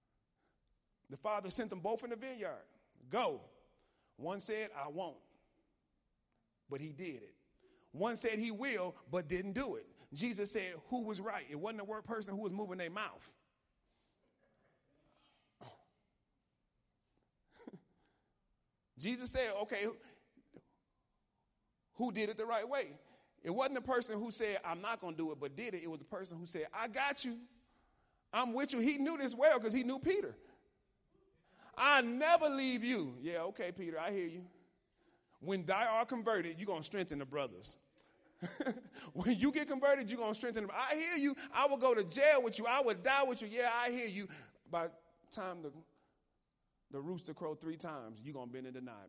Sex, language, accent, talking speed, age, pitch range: male, English, American, 180 wpm, 30-49, 175-250 Hz